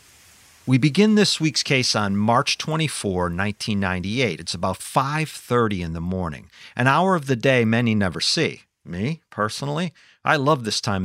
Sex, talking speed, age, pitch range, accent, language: male, 155 wpm, 40-59, 95-140 Hz, American, English